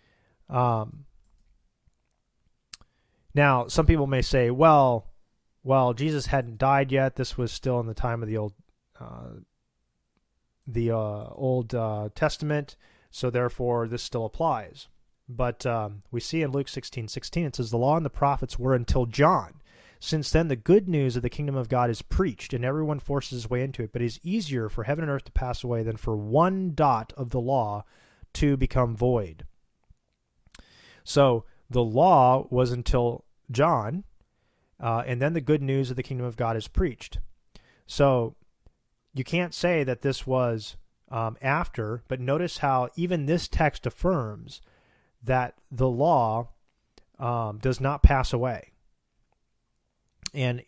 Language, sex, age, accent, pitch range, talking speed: English, male, 30-49, American, 115-140 Hz, 160 wpm